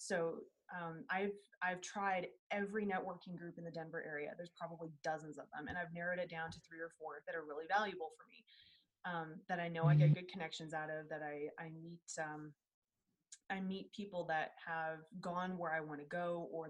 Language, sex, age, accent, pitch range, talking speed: English, female, 20-39, American, 165-200 Hz, 210 wpm